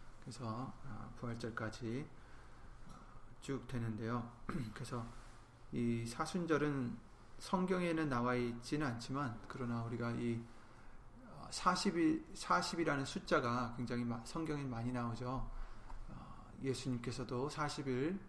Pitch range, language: 115-135 Hz, Korean